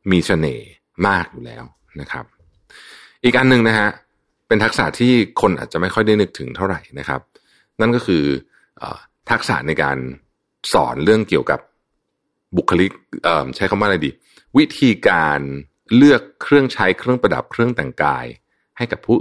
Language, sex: Thai, male